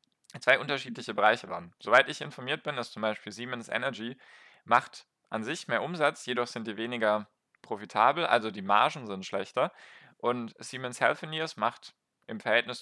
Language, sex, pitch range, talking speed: German, male, 105-135 Hz, 160 wpm